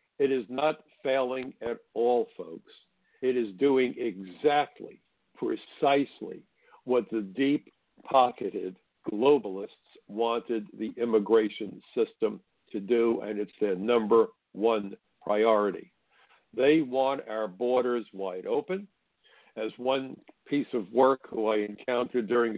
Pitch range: 110-145 Hz